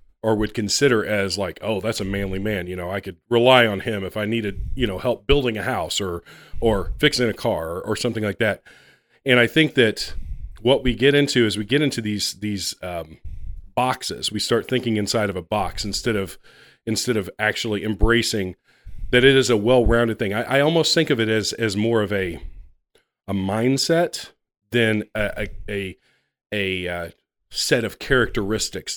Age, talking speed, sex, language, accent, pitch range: 40-59, 190 wpm, male, English, American, 95-120 Hz